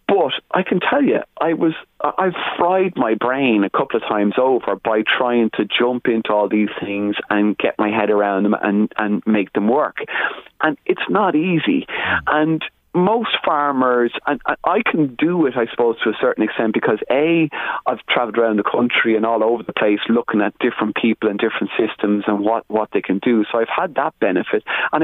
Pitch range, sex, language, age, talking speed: 105-135 Hz, male, English, 30-49, 200 wpm